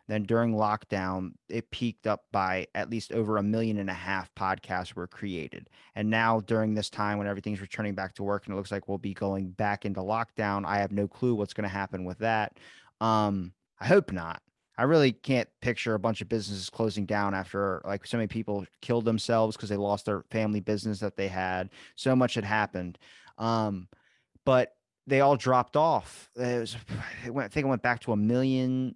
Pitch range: 100-125 Hz